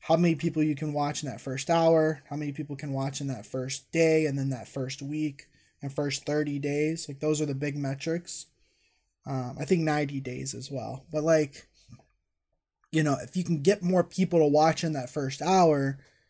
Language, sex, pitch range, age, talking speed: English, male, 140-160 Hz, 20-39, 210 wpm